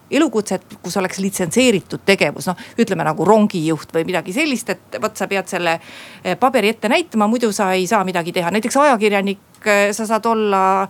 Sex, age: female, 40-59